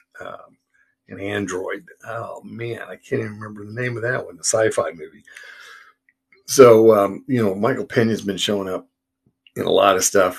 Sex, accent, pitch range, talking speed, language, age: male, American, 95-125 Hz, 180 wpm, English, 50-69